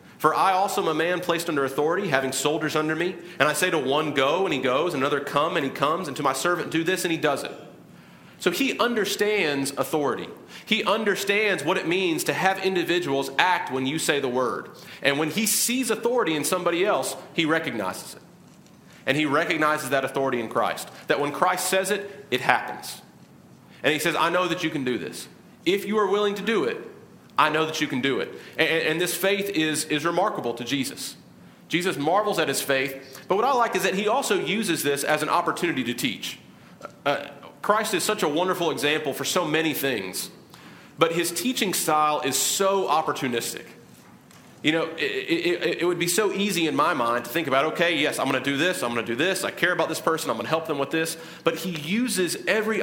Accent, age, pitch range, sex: American, 40-59, 145-190 Hz, male